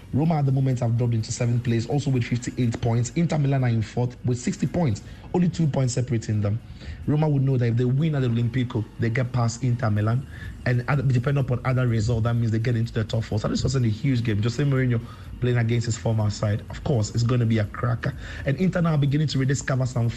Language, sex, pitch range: English, male, 115-135 Hz